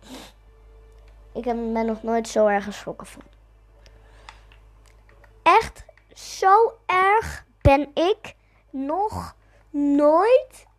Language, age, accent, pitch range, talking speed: Dutch, 20-39, Dutch, 210-330 Hz, 85 wpm